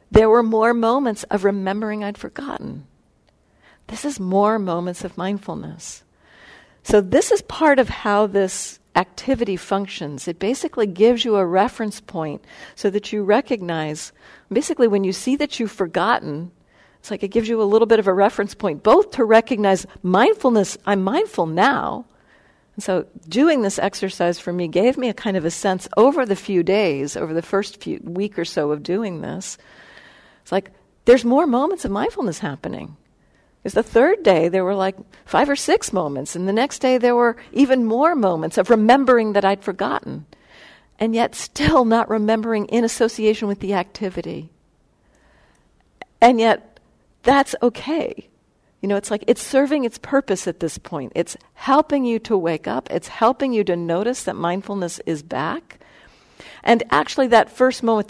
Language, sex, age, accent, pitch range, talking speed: English, female, 50-69, American, 190-240 Hz, 170 wpm